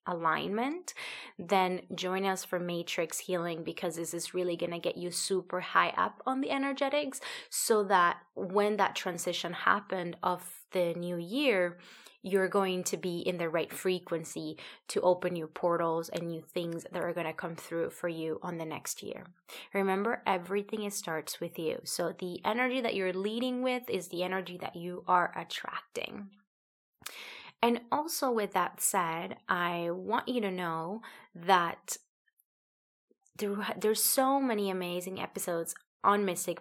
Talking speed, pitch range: 155 wpm, 175-210 Hz